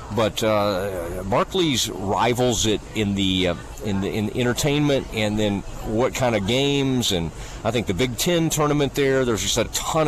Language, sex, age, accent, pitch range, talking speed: English, male, 40-59, American, 95-125 Hz, 180 wpm